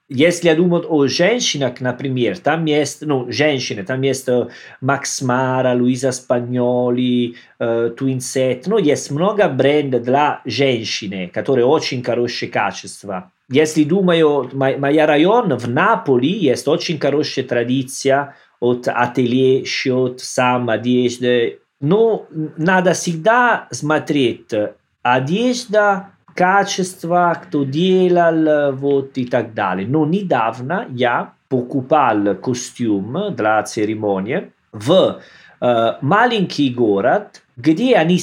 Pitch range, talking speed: 125-170 Hz, 110 wpm